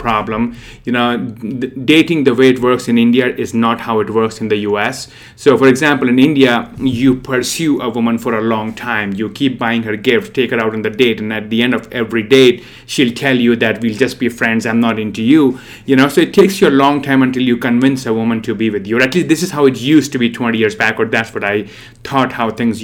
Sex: male